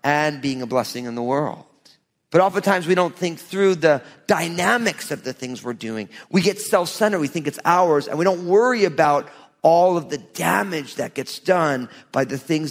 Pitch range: 145-195 Hz